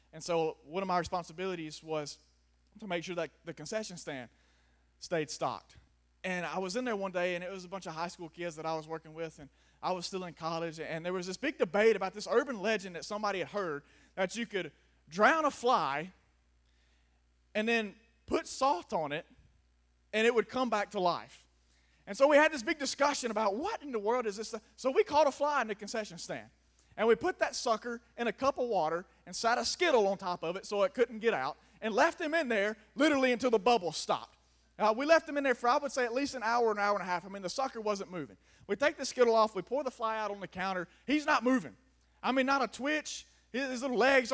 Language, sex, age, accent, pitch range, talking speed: English, male, 20-39, American, 175-255 Hz, 245 wpm